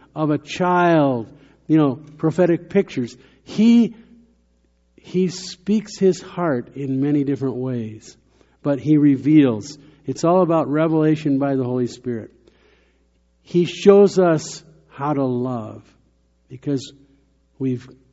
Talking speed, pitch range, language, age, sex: 115 wpm, 125-170 Hz, English, 50-69, male